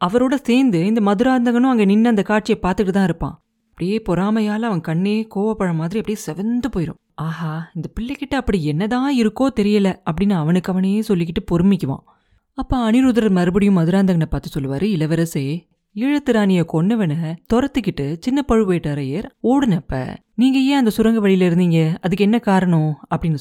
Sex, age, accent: female, 30-49, native